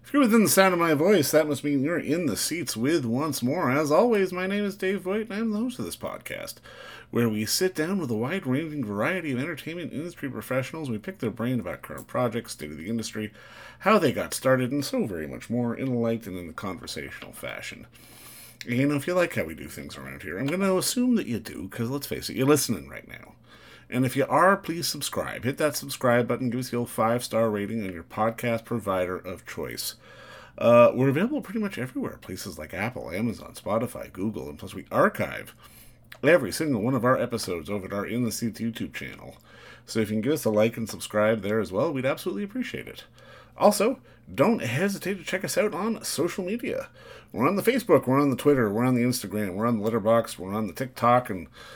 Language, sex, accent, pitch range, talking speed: English, male, American, 110-170 Hz, 230 wpm